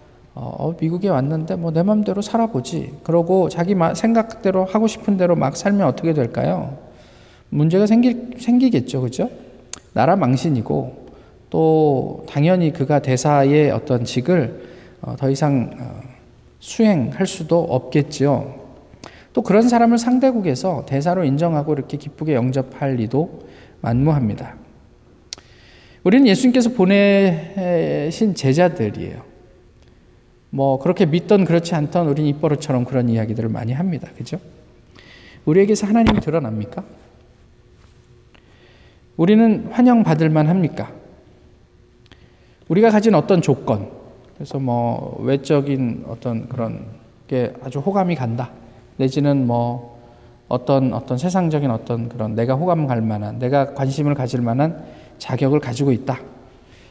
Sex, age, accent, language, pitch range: male, 20-39, native, Korean, 125-180 Hz